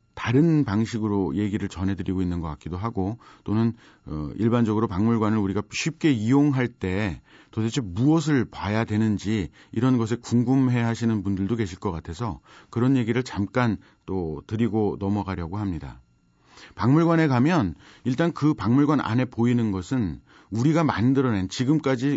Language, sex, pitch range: Korean, male, 105-140 Hz